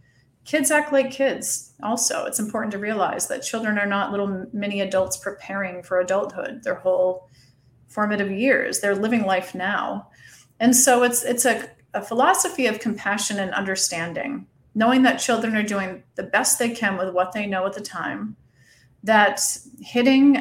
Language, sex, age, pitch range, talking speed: English, female, 30-49, 185-245 Hz, 165 wpm